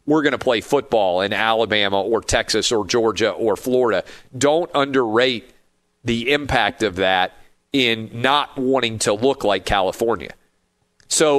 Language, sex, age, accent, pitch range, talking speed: English, male, 40-59, American, 110-135 Hz, 140 wpm